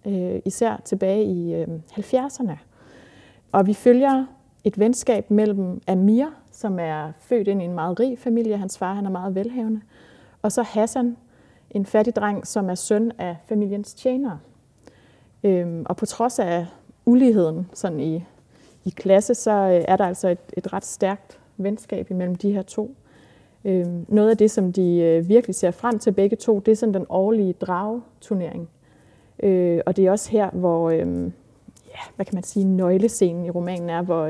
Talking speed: 165 wpm